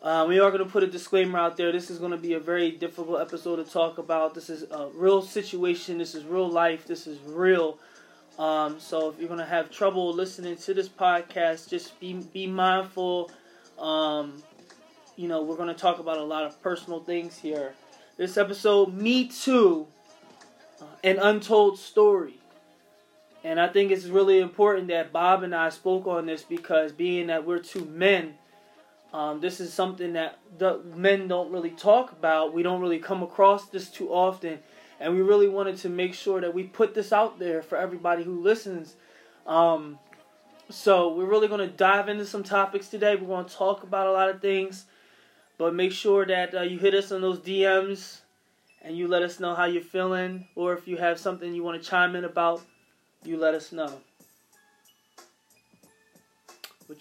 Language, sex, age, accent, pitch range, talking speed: English, male, 20-39, American, 165-195 Hz, 190 wpm